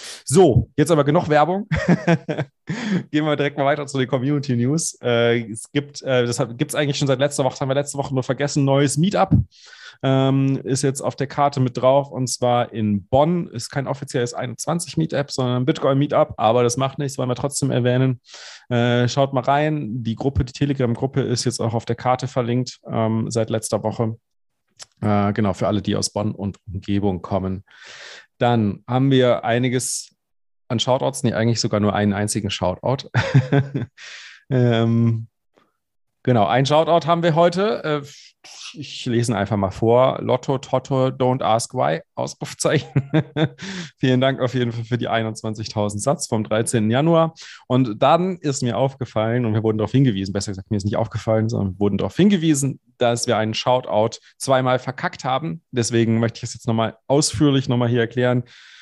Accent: German